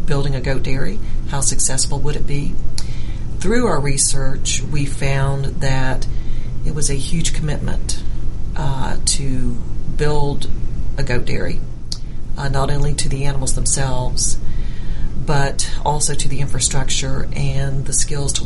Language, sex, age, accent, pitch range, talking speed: English, female, 40-59, American, 130-145 Hz, 135 wpm